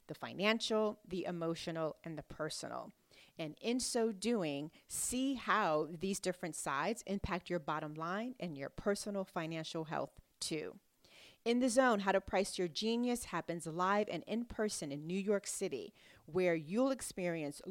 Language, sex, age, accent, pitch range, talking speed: English, female, 40-59, American, 170-215 Hz, 155 wpm